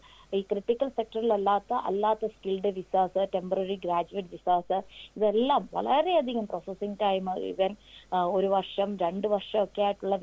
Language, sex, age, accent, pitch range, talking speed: Malayalam, female, 20-39, native, 185-220 Hz, 105 wpm